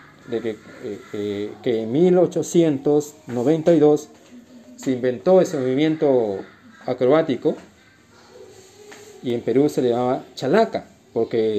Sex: male